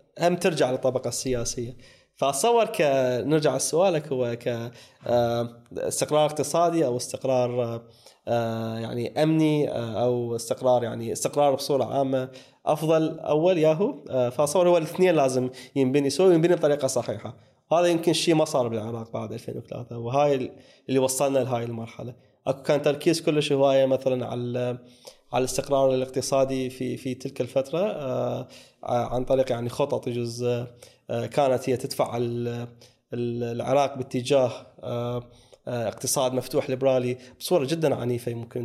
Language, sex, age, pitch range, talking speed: Arabic, male, 20-39, 120-145 Hz, 120 wpm